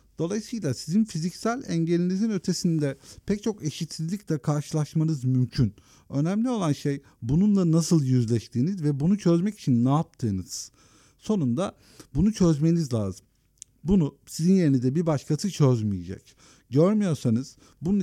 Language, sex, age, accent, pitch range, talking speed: Turkish, male, 50-69, native, 125-165 Hz, 115 wpm